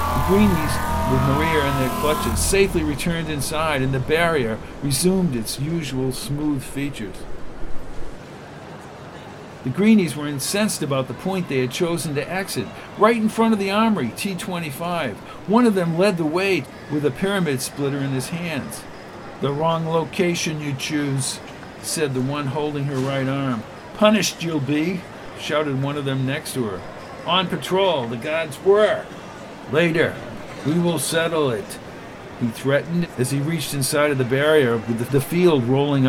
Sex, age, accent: male, 50-69, American